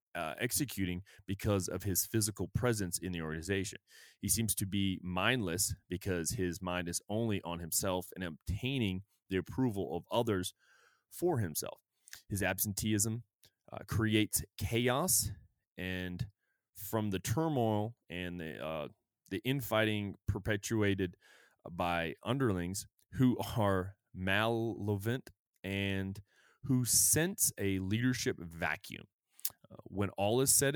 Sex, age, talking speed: male, 30-49, 115 wpm